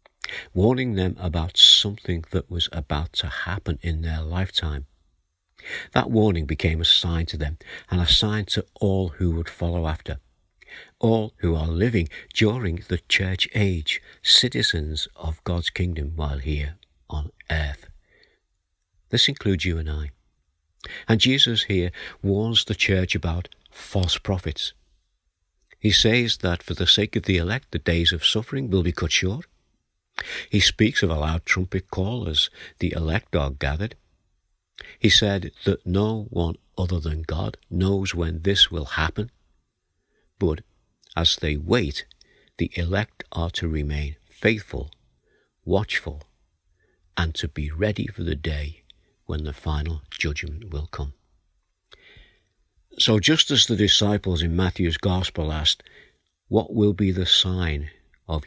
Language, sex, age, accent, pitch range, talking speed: English, male, 60-79, British, 80-100 Hz, 145 wpm